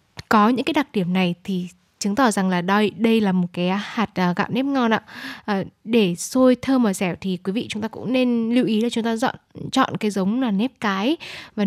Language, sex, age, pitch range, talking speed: Vietnamese, female, 10-29, 200-260 Hz, 240 wpm